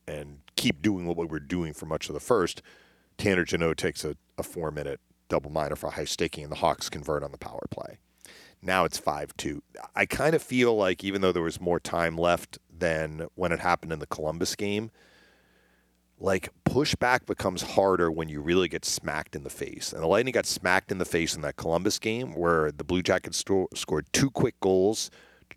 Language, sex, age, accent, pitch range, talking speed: English, male, 40-59, American, 80-105 Hz, 205 wpm